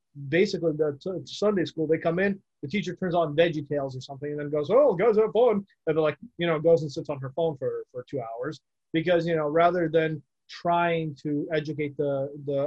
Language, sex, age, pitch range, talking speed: English, male, 30-49, 140-165 Hz, 220 wpm